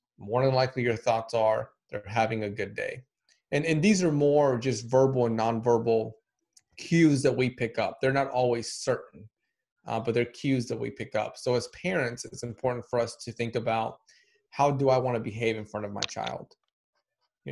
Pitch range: 110-130 Hz